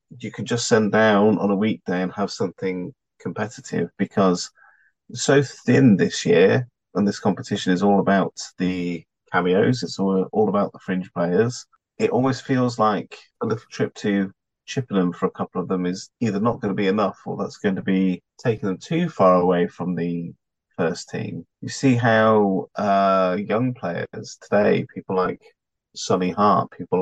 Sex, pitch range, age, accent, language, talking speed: male, 90-115 Hz, 30-49, British, English, 175 wpm